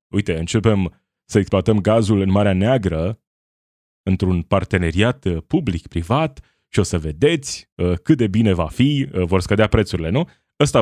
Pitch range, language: 90-115 Hz, Romanian